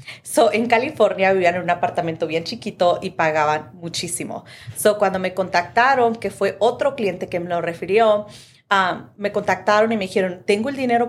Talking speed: 180 wpm